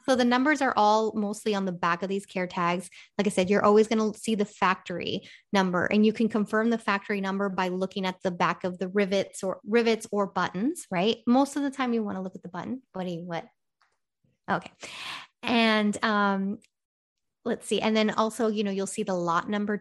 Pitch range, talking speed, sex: 190-220 Hz, 220 wpm, female